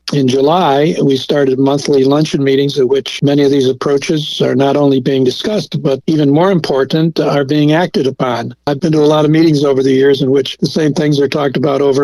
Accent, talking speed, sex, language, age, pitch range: American, 225 wpm, male, English, 60-79, 140-160 Hz